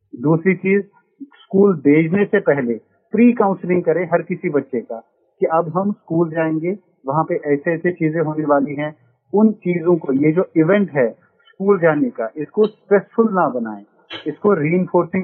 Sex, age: male, 40-59